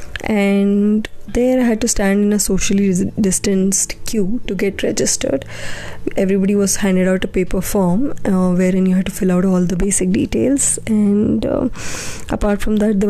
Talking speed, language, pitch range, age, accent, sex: 175 wpm, English, 195-225 Hz, 20-39, Indian, female